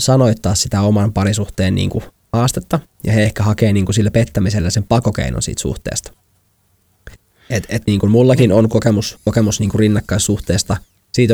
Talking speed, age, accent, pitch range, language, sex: 155 wpm, 20-39, native, 95-115 Hz, Finnish, male